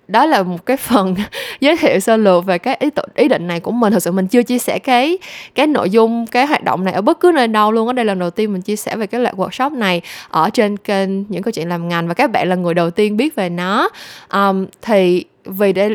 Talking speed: 265 wpm